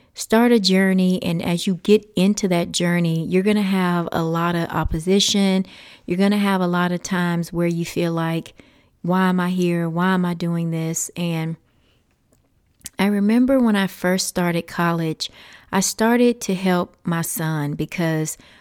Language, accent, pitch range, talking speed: English, American, 165-195 Hz, 175 wpm